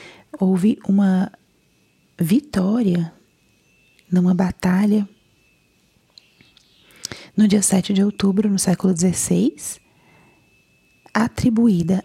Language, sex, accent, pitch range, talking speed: Portuguese, female, Brazilian, 185-210 Hz, 70 wpm